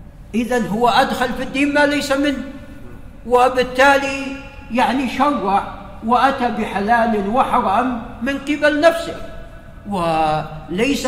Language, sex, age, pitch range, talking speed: Arabic, male, 50-69, 205-255 Hz, 95 wpm